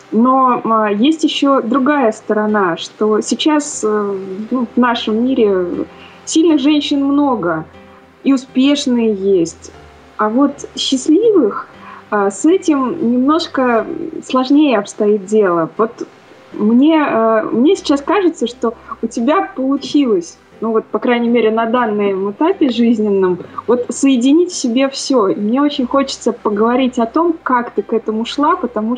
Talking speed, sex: 125 wpm, female